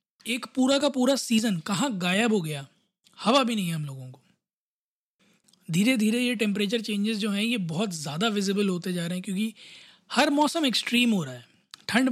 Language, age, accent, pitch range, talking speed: Hindi, 20-39, native, 195-235 Hz, 195 wpm